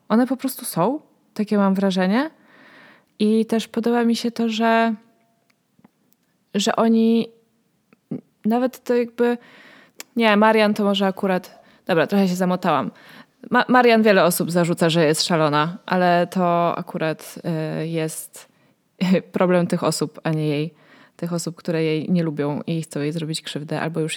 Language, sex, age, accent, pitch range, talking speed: Polish, female, 20-39, native, 170-215 Hz, 145 wpm